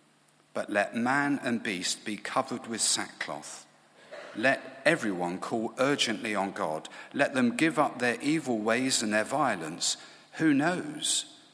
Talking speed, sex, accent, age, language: 140 wpm, male, British, 50-69, English